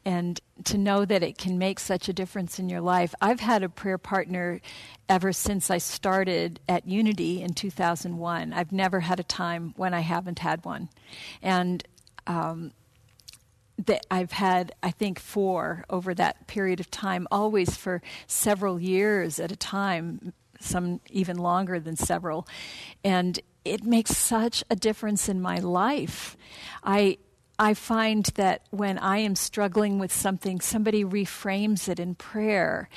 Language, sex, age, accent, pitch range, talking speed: English, female, 50-69, American, 180-205 Hz, 155 wpm